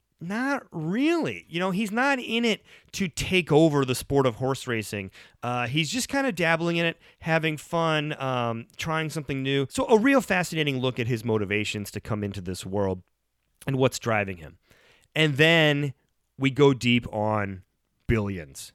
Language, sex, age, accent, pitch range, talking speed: English, male, 30-49, American, 125-160 Hz, 175 wpm